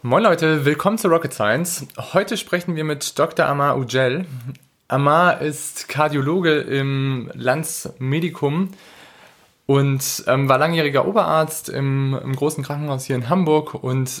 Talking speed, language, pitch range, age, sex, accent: 130 wpm, German, 130-155 Hz, 20-39, male, German